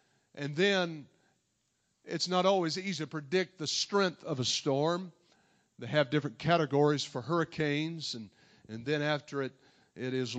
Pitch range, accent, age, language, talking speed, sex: 145-175 Hz, American, 50-69, English, 150 wpm, male